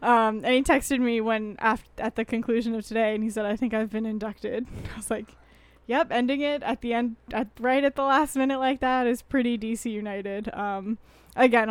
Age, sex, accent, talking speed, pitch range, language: 10-29, female, American, 210 wpm, 205-230 Hz, English